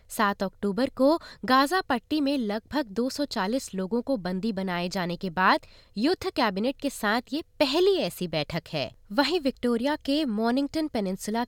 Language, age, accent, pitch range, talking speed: Hindi, 20-39, native, 205-290 Hz, 150 wpm